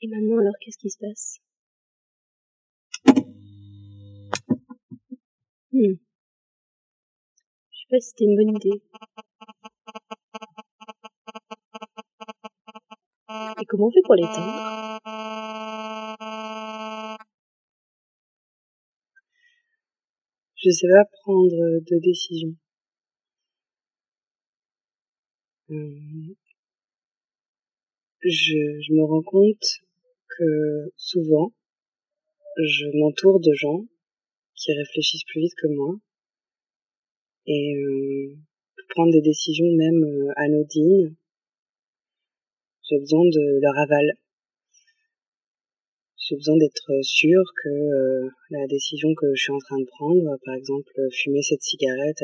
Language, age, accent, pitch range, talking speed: French, 30-49, French, 145-220 Hz, 90 wpm